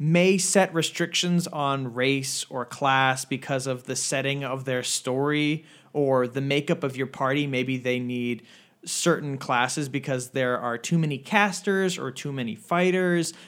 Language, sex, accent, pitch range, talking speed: English, male, American, 130-175 Hz, 155 wpm